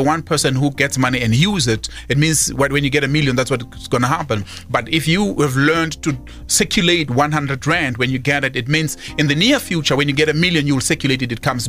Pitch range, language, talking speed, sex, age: 125-160 Hz, English, 250 wpm, male, 30-49